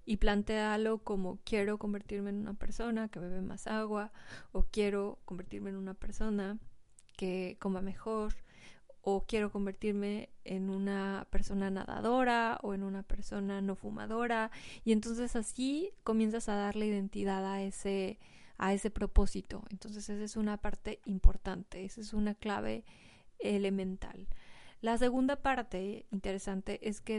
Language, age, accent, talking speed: Spanish, 20-39, Mexican, 135 wpm